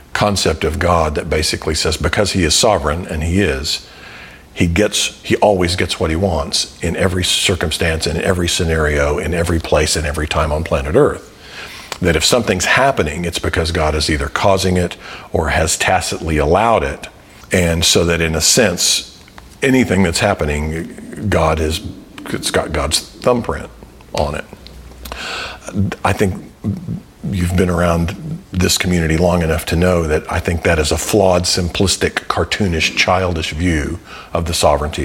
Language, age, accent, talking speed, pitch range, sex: English, 50-69, American, 160 wpm, 80-95 Hz, male